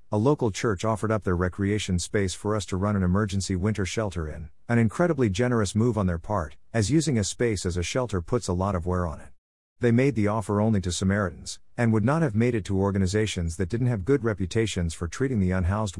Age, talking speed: 50-69, 235 wpm